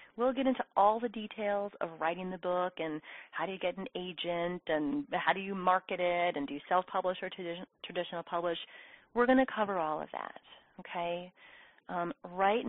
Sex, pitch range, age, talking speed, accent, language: female, 175-210 Hz, 30-49, 190 wpm, American, English